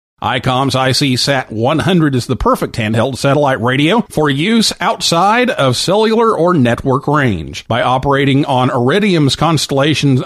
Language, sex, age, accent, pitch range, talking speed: English, male, 50-69, American, 125-185 Hz, 135 wpm